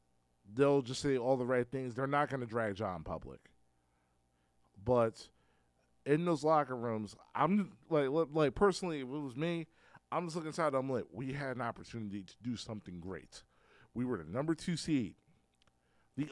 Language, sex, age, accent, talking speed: English, male, 40-59, American, 180 wpm